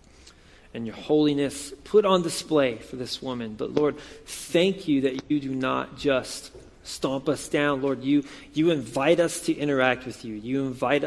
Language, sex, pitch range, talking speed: English, male, 120-150 Hz, 175 wpm